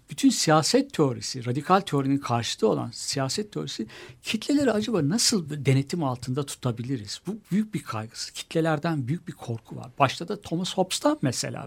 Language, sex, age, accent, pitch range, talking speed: Turkish, male, 60-79, native, 135-185 Hz, 150 wpm